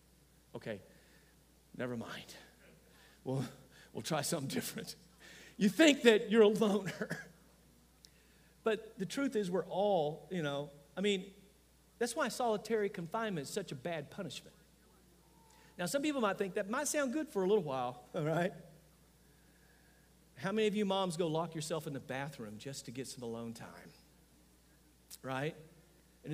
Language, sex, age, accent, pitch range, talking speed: English, male, 50-69, American, 135-200 Hz, 150 wpm